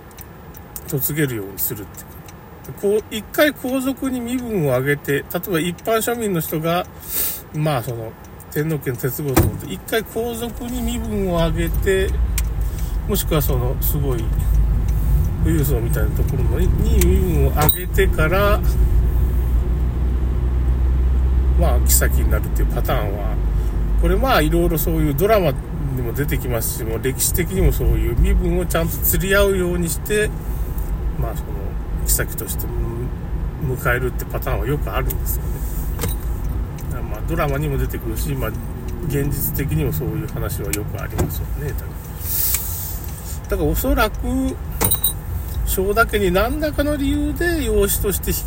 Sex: male